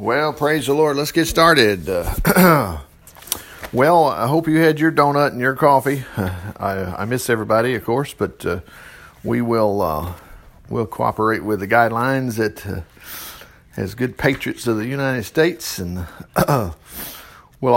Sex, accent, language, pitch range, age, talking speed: male, American, English, 100-145 Hz, 50-69, 155 wpm